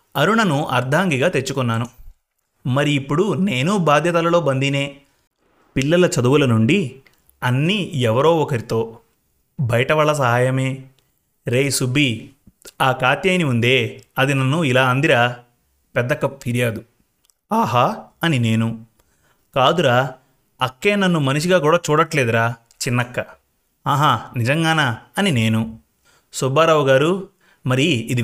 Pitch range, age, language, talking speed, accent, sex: 120-160 Hz, 30-49, Telugu, 85 wpm, native, male